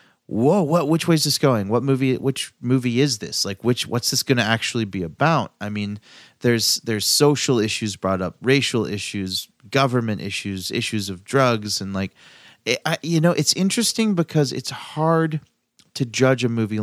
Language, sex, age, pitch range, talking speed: English, male, 30-49, 95-130 Hz, 180 wpm